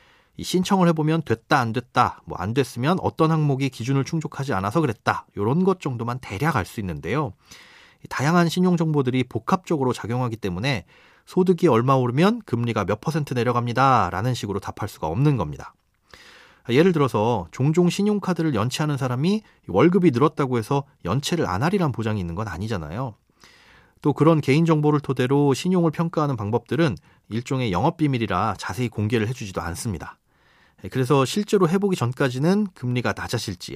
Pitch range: 115-165 Hz